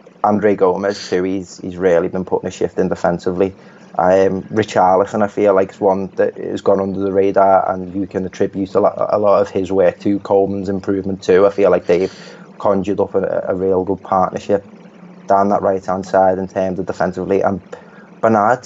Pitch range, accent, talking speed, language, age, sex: 95-110 Hz, British, 195 wpm, English, 20-39, male